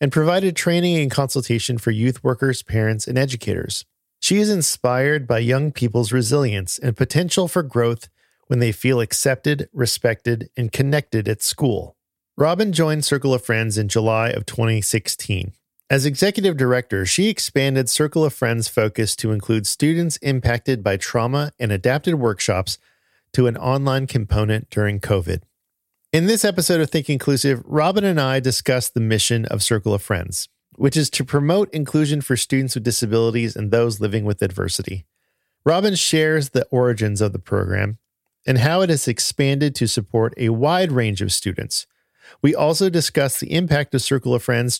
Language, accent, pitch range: English, American, 110-145 Hz